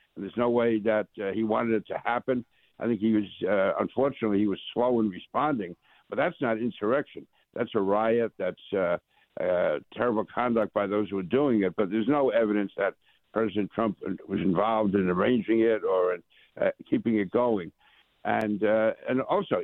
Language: English